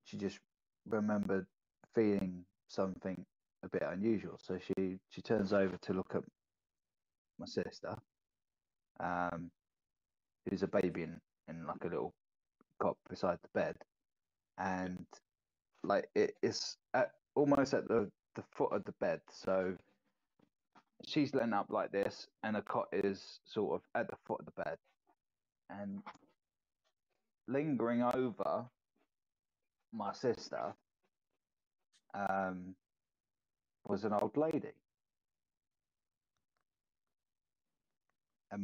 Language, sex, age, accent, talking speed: English, male, 20-39, British, 110 wpm